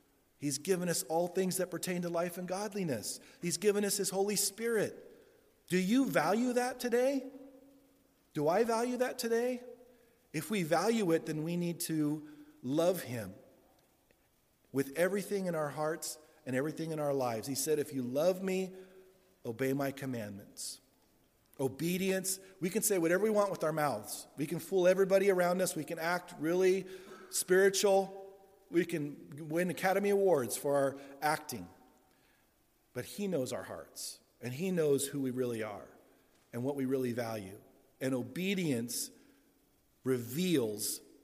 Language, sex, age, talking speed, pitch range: English, male, 40-59, 155 wpm, 140-190 Hz